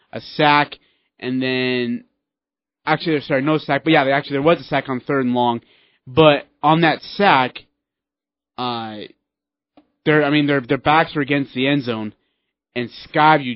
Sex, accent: male, American